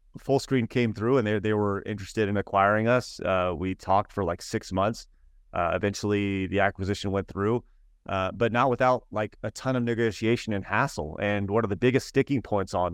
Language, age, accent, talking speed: English, 30-49, American, 205 wpm